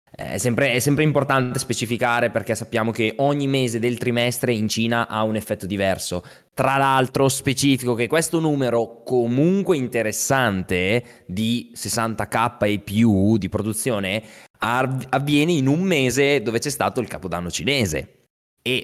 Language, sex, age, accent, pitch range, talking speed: Italian, male, 20-39, native, 110-145 Hz, 135 wpm